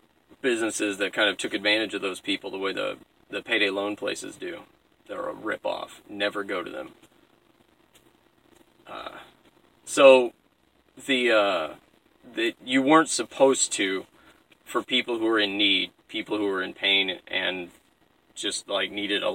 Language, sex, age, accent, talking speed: English, male, 30-49, American, 155 wpm